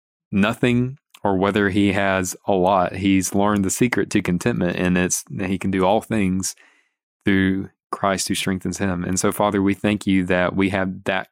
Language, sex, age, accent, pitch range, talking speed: English, male, 20-39, American, 95-100 Hz, 190 wpm